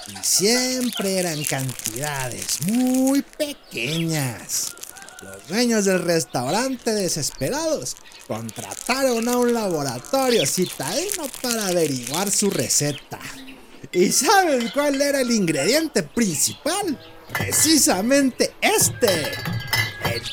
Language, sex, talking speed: Spanish, male, 90 wpm